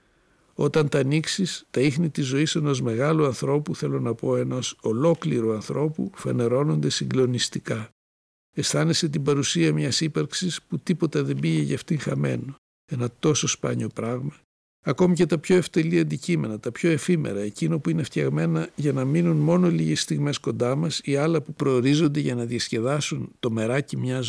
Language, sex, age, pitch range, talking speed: Greek, male, 60-79, 120-155 Hz, 160 wpm